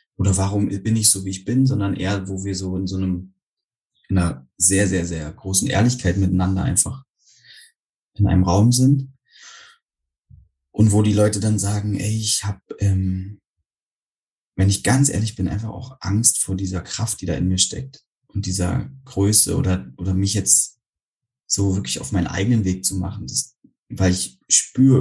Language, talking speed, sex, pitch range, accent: German, 180 wpm, male, 95-105 Hz, German